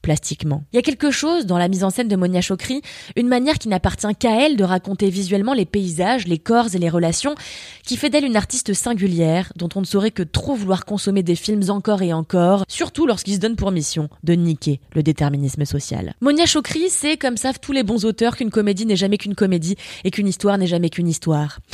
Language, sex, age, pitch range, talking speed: French, female, 20-39, 170-225 Hz, 225 wpm